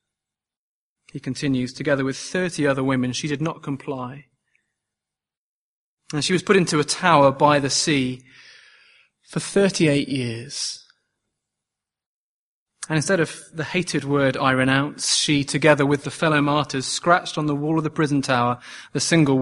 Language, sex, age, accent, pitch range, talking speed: English, male, 30-49, British, 140-165 Hz, 150 wpm